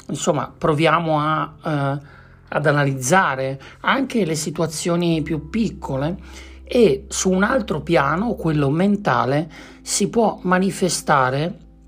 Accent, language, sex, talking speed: native, Italian, male, 105 wpm